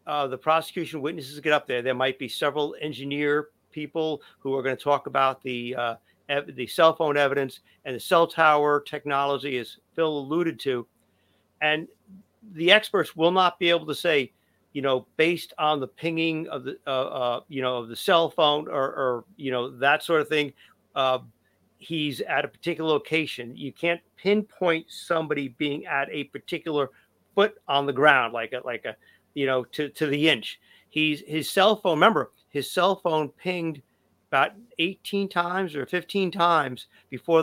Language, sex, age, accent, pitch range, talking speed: English, male, 50-69, American, 135-165 Hz, 180 wpm